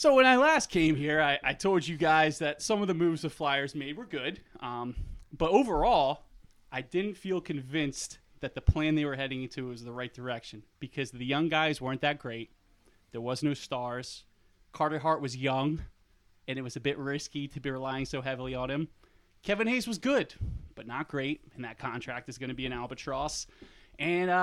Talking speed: 205 wpm